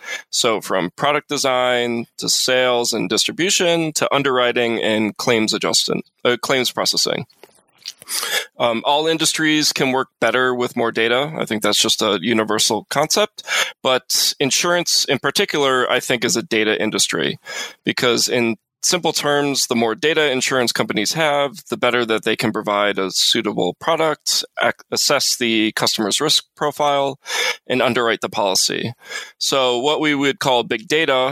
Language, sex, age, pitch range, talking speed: English, male, 20-39, 115-145 Hz, 150 wpm